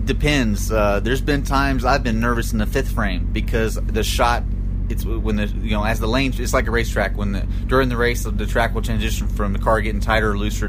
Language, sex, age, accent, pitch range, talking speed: English, male, 30-49, American, 100-115 Hz, 240 wpm